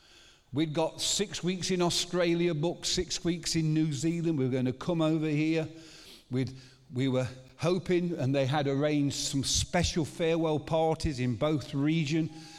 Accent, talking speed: British, 160 wpm